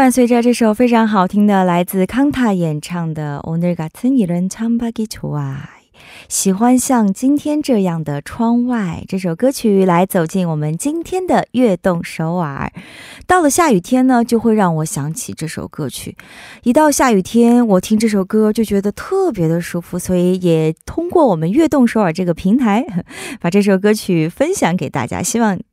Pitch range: 175-255 Hz